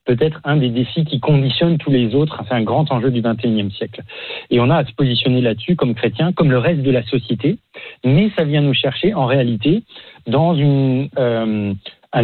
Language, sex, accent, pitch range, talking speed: French, male, French, 120-150 Hz, 205 wpm